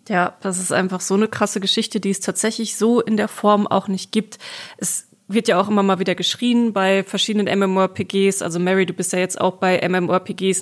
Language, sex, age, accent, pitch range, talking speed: German, female, 20-39, German, 185-215 Hz, 215 wpm